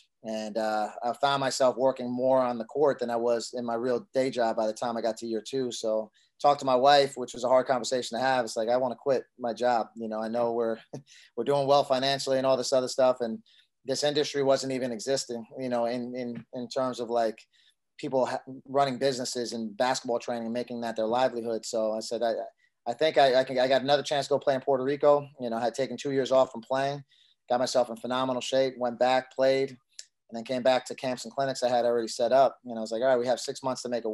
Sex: male